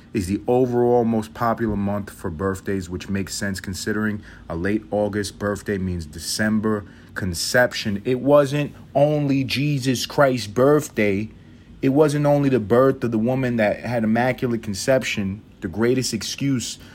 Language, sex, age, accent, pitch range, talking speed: English, male, 30-49, American, 100-125 Hz, 140 wpm